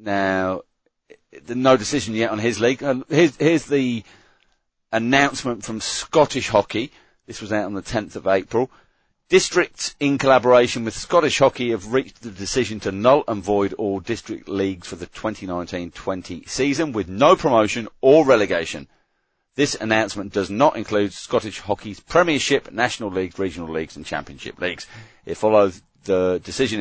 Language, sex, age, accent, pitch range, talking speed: English, male, 40-59, British, 95-125 Hz, 155 wpm